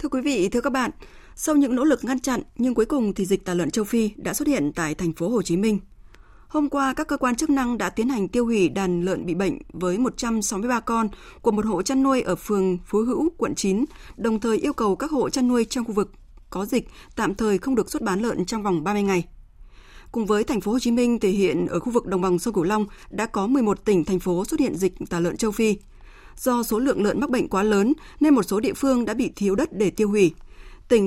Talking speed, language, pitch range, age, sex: 260 wpm, Vietnamese, 195-265 Hz, 20-39, female